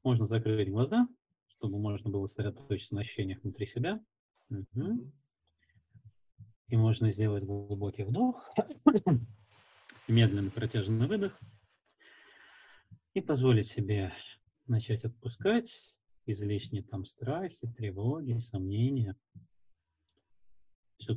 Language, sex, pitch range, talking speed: Russian, male, 100-120 Hz, 85 wpm